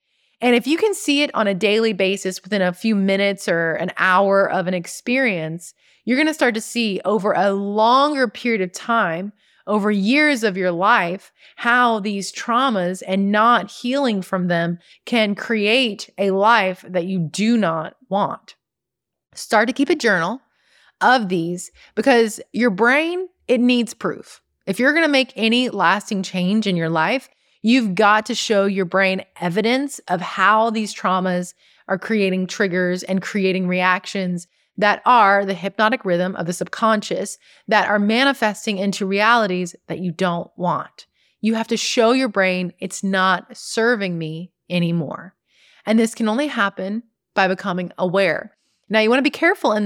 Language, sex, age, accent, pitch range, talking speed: English, female, 30-49, American, 185-235 Hz, 165 wpm